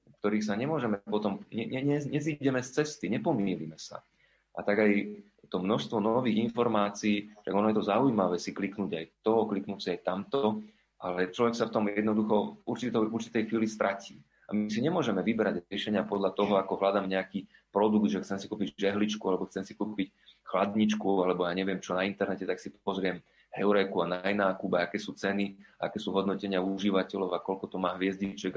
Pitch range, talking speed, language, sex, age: 95-110 Hz, 185 wpm, Slovak, male, 30-49